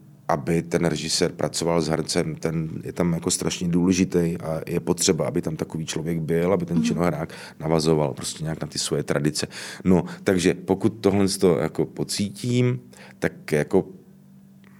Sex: male